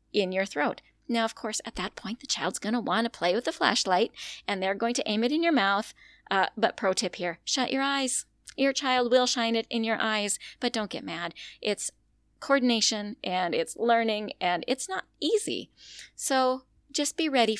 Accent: American